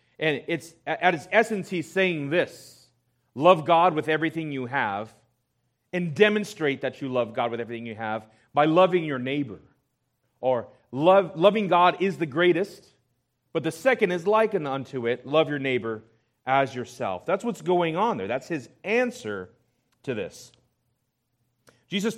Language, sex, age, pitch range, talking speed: English, male, 40-59, 125-185 Hz, 155 wpm